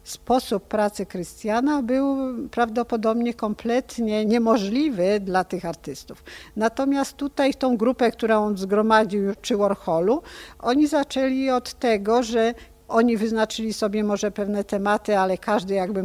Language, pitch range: Polish, 185-220 Hz